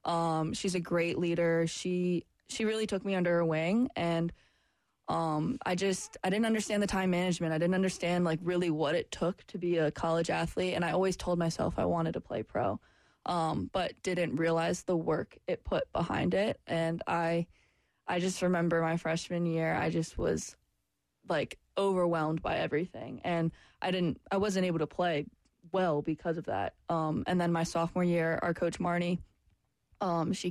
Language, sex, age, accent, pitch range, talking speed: English, female, 20-39, American, 160-180 Hz, 185 wpm